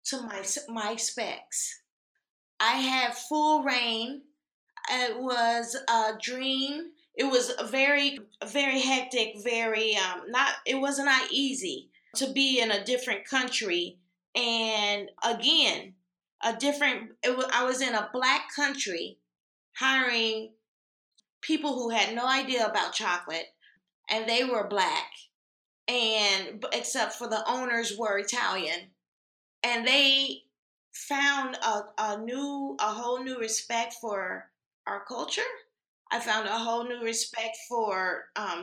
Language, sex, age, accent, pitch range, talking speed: English, female, 20-39, American, 215-265 Hz, 125 wpm